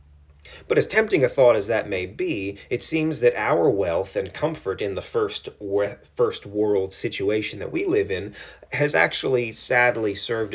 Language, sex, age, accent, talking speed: English, male, 30-49, American, 175 wpm